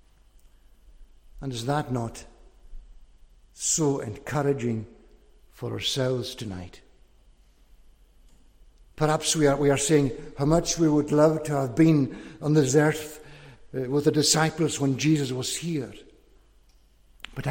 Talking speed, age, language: 115 wpm, 60-79, English